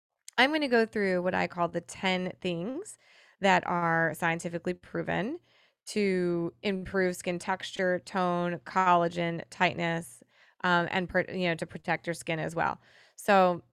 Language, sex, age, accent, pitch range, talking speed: English, female, 20-39, American, 175-200 Hz, 145 wpm